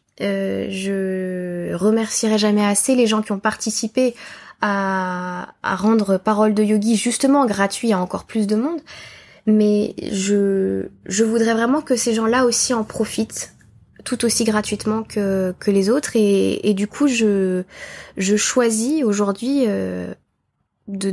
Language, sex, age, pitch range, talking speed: French, female, 20-39, 200-235 Hz, 145 wpm